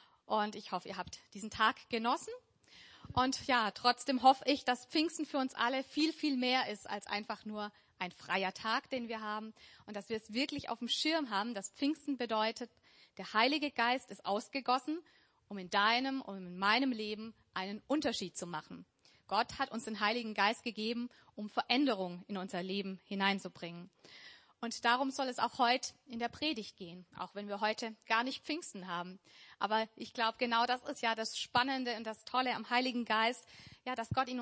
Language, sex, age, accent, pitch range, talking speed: German, female, 30-49, German, 205-260 Hz, 190 wpm